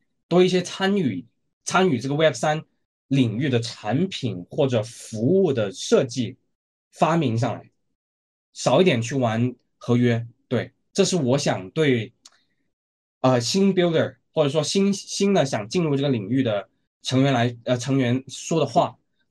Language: Chinese